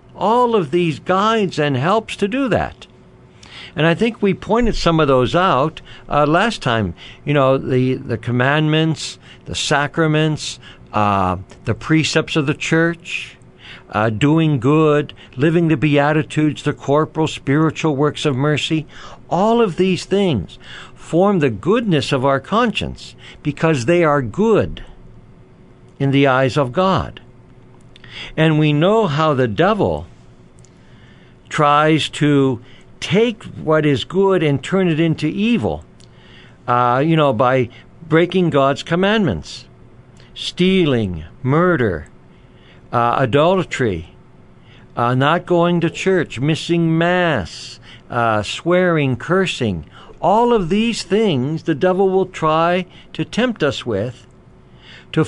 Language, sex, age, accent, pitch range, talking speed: English, male, 60-79, American, 130-175 Hz, 125 wpm